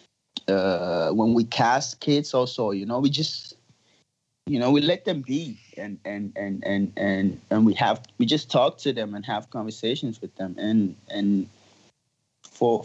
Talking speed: 175 wpm